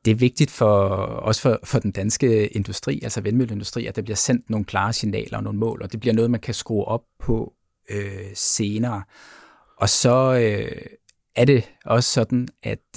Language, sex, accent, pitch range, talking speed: Danish, male, native, 100-115 Hz, 190 wpm